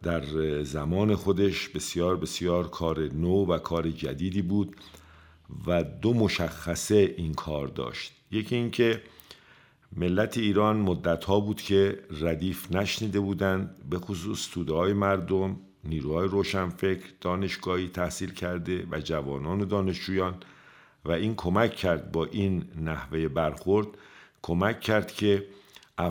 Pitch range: 85-100 Hz